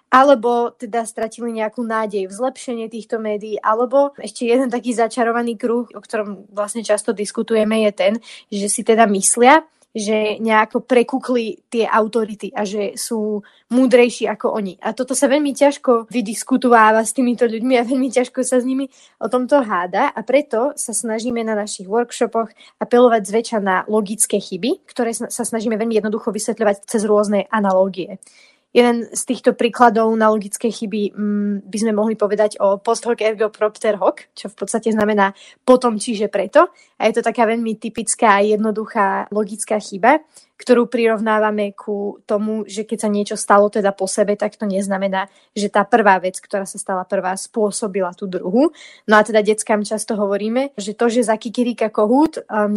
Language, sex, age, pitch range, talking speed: Slovak, female, 20-39, 210-240 Hz, 170 wpm